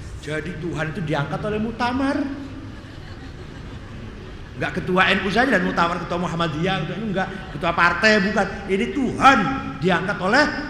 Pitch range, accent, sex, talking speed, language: 180-255 Hz, native, male, 120 wpm, Indonesian